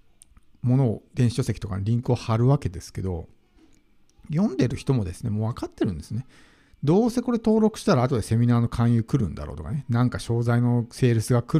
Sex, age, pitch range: male, 50-69, 100-135 Hz